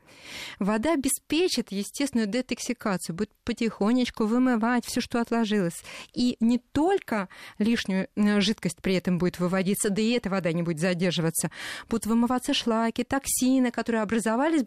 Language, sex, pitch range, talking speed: Russian, female, 190-245 Hz, 130 wpm